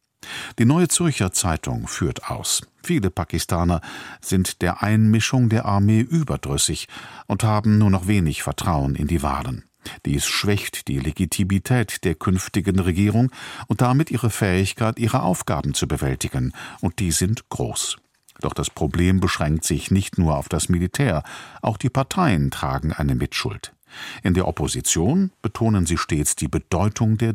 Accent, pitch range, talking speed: German, 85-115 Hz, 145 wpm